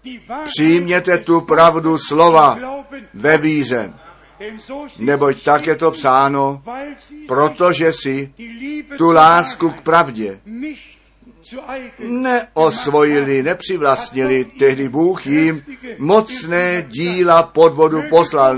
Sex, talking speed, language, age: male, 85 wpm, Czech, 50-69